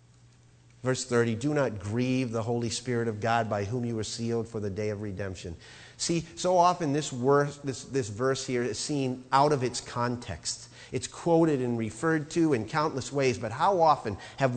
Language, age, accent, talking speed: English, 40-59, American, 185 wpm